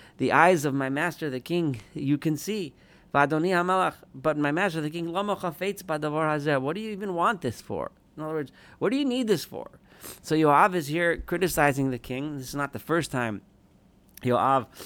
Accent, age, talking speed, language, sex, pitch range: American, 40-59, 180 wpm, English, male, 115-155 Hz